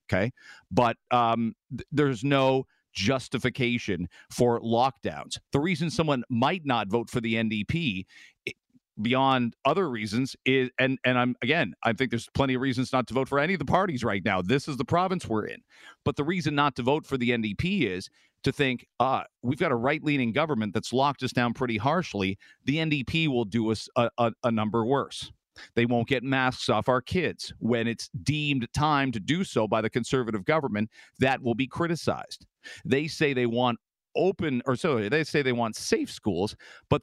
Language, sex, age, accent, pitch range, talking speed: English, male, 50-69, American, 115-145 Hz, 195 wpm